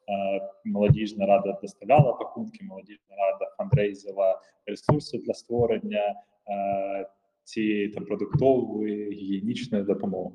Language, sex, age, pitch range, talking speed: Ukrainian, male, 20-39, 100-120 Hz, 80 wpm